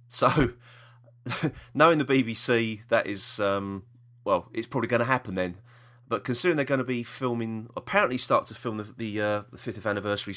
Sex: male